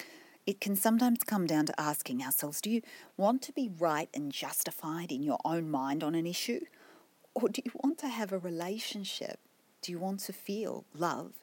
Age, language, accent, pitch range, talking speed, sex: 40-59, English, Australian, 155-240 Hz, 195 wpm, female